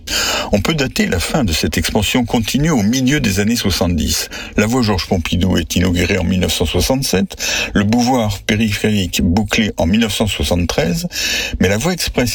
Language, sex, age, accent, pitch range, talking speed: French, male, 60-79, French, 90-115 Hz, 155 wpm